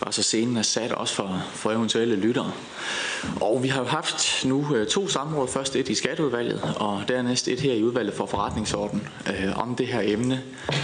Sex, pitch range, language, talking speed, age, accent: male, 100-135 Hz, Danish, 195 wpm, 20-39, native